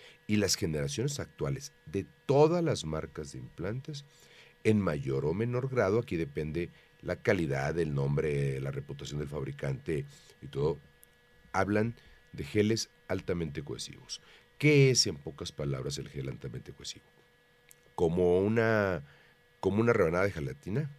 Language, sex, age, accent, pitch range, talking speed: Spanish, male, 40-59, Mexican, 80-120 Hz, 135 wpm